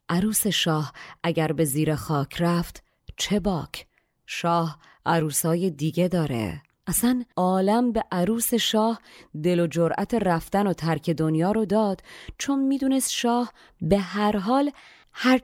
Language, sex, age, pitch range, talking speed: Persian, female, 30-49, 155-200 Hz, 135 wpm